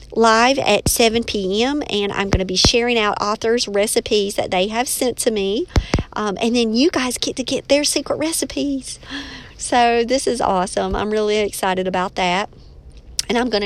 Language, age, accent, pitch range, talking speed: English, 40-59, American, 195-250 Hz, 185 wpm